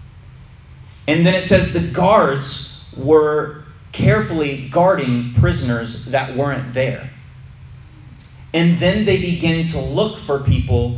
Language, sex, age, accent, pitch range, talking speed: English, male, 30-49, American, 110-150 Hz, 115 wpm